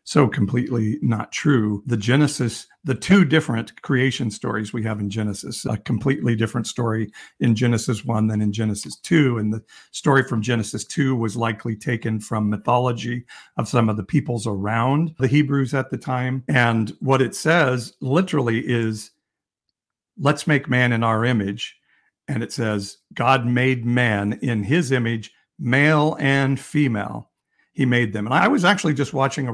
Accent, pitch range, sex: American, 115-135 Hz, male